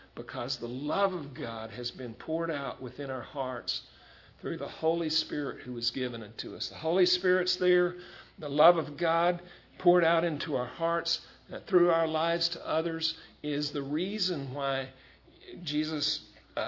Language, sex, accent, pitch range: English, male, American, 125-165 Hz